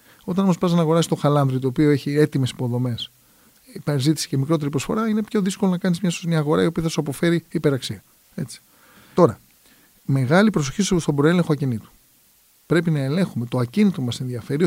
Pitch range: 130-170 Hz